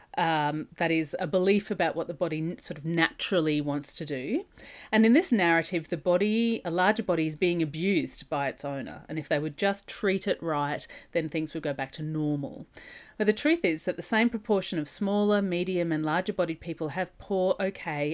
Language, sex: English, female